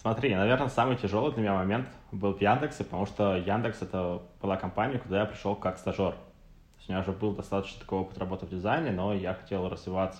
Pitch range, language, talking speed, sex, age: 90-105 Hz, Russian, 205 wpm, male, 20-39